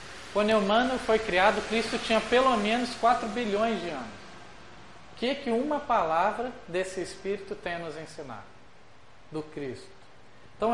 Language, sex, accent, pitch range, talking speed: Portuguese, male, Brazilian, 160-225 Hz, 150 wpm